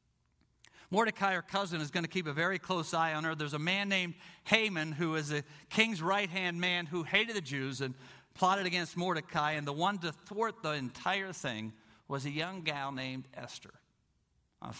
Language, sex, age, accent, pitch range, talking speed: English, male, 50-69, American, 110-150 Hz, 190 wpm